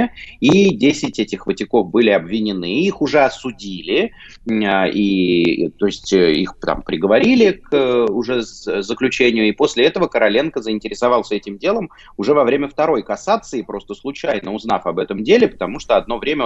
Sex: male